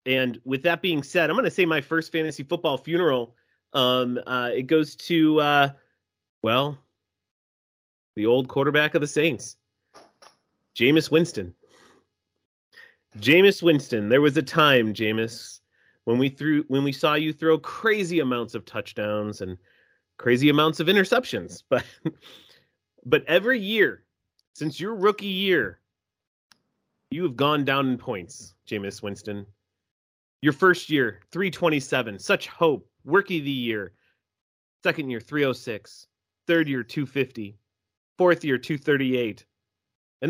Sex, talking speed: male, 130 wpm